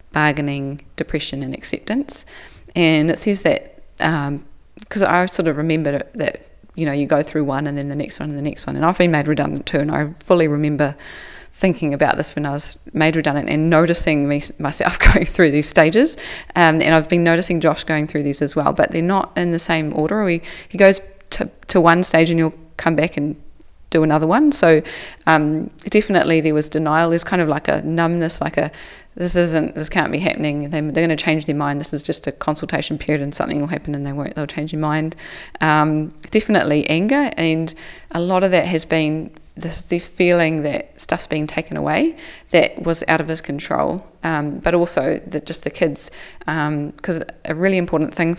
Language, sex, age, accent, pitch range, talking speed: English, female, 20-39, Australian, 150-170 Hz, 210 wpm